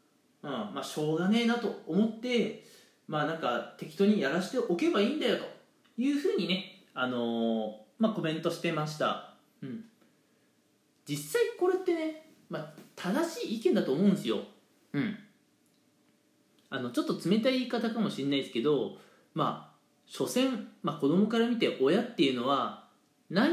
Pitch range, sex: 180-280 Hz, male